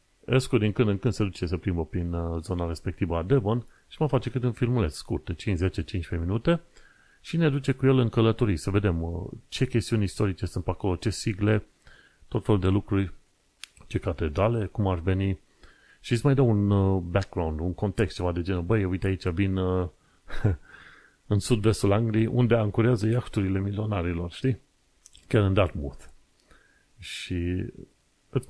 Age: 30-49